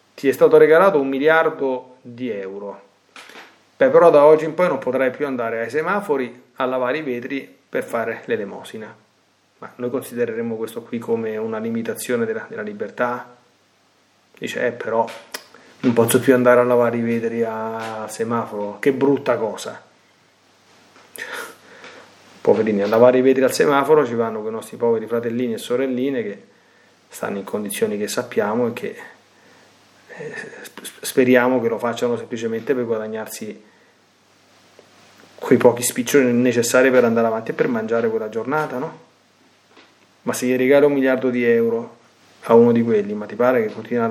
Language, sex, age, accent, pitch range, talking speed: Italian, male, 30-49, native, 115-145 Hz, 155 wpm